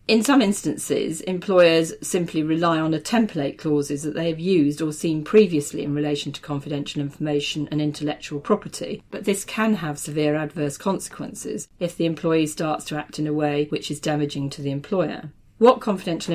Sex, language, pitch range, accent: female, English, 145-175 Hz, British